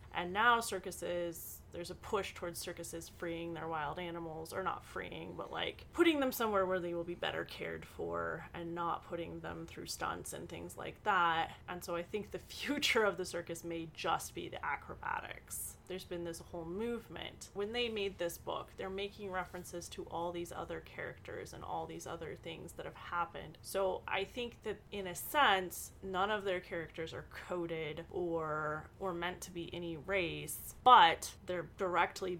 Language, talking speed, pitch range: English, 185 wpm, 170-200 Hz